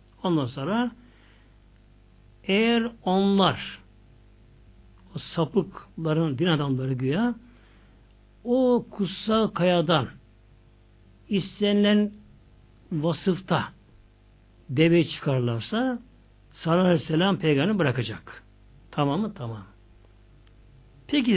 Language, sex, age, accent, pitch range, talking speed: Turkish, male, 60-79, native, 120-180 Hz, 65 wpm